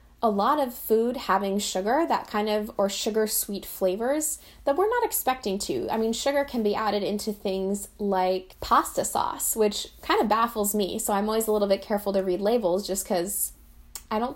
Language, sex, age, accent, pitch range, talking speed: English, female, 10-29, American, 195-240 Hz, 200 wpm